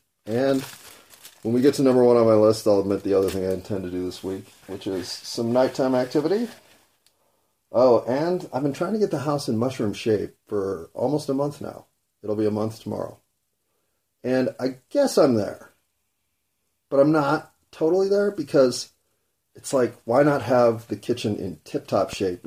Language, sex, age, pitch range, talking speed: English, male, 30-49, 95-125 Hz, 185 wpm